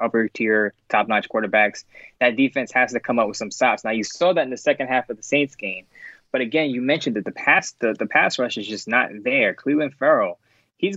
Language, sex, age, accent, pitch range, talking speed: English, male, 20-39, American, 115-140 Hz, 230 wpm